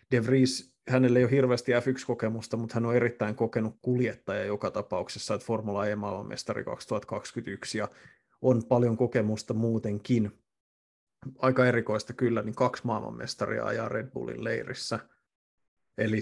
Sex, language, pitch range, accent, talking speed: male, Finnish, 110-125 Hz, native, 130 wpm